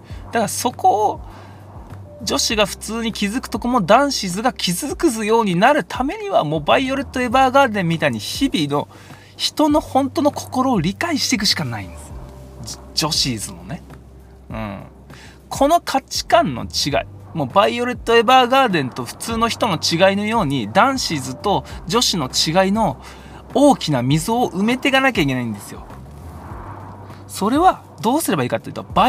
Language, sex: Japanese, male